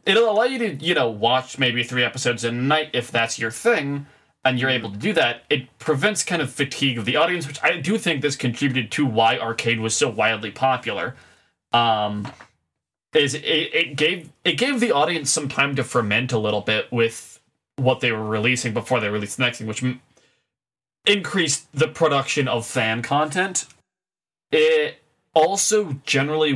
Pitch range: 115-155 Hz